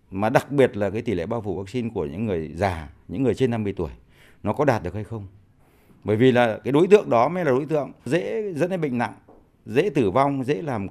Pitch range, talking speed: 100-135 Hz, 255 wpm